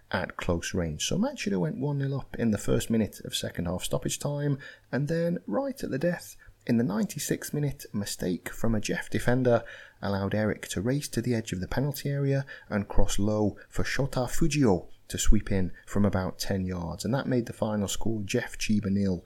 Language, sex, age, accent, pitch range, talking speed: English, male, 30-49, British, 100-140 Hz, 200 wpm